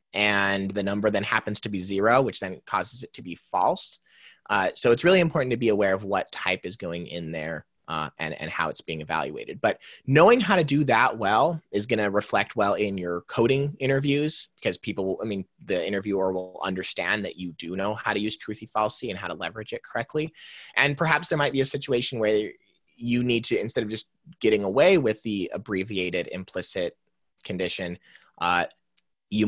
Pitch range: 95-140 Hz